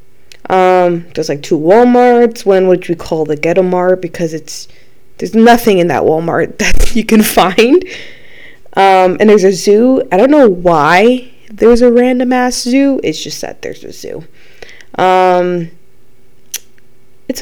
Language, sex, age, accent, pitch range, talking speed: English, female, 20-39, American, 175-245 Hz, 150 wpm